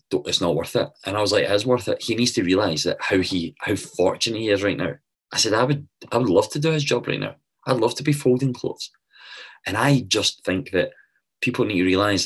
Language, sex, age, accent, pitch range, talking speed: English, male, 20-39, British, 85-105 Hz, 265 wpm